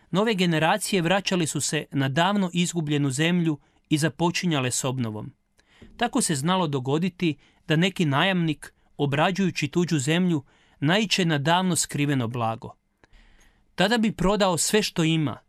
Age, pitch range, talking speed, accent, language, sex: 40-59, 145-185 Hz, 130 wpm, native, Croatian, male